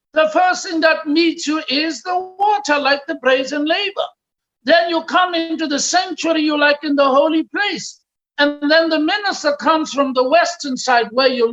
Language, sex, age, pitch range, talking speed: English, male, 60-79, 240-315 Hz, 185 wpm